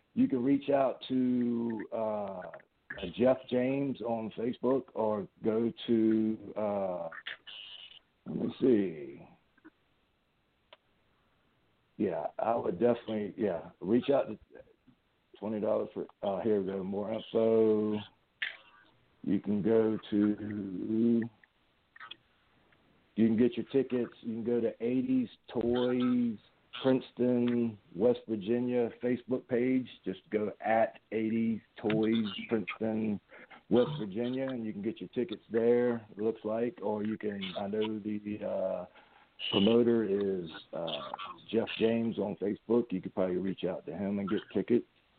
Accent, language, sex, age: American, English, male, 60-79